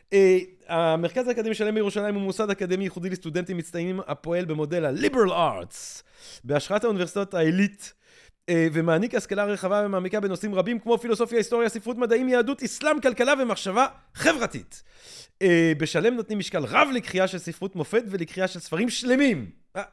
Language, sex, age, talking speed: Hebrew, male, 30-49, 150 wpm